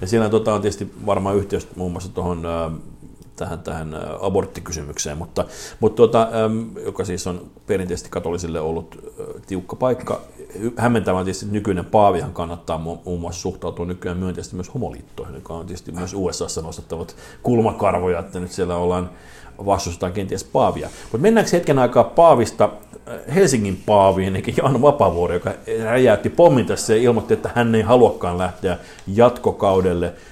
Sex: male